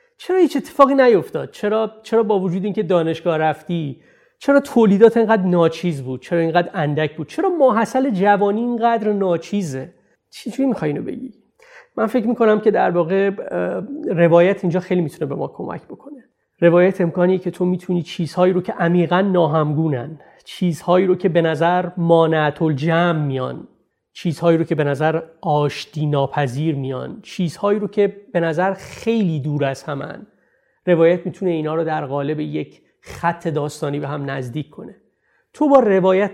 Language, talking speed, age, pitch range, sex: English, 150 wpm, 30-49, 155-205 Hz, male